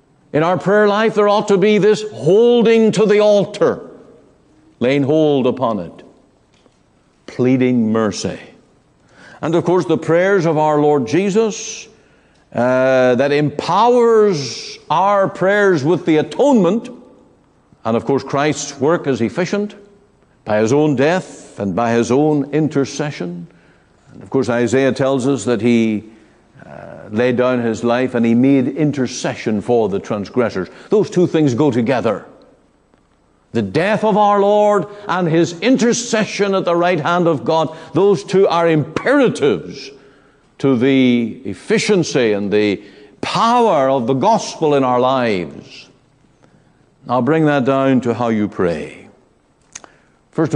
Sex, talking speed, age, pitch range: male, 140 wpm, 60-79, 125-200 Hz